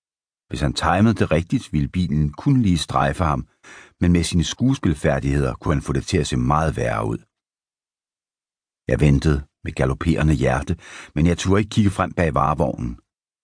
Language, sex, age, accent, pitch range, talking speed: Danish, male, 60-79, native, 75-95 Hz, 170 wpm